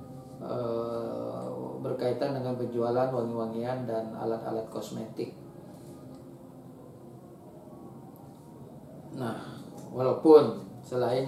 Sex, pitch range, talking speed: male, 115-130 Hz, 55 wpm